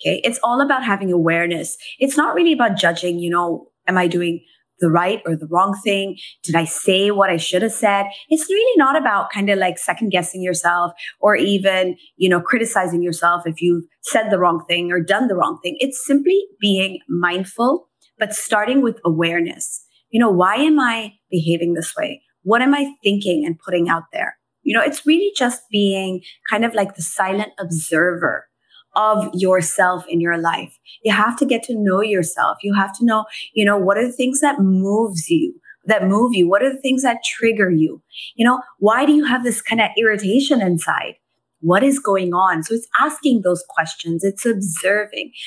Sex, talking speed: female, 200 wpm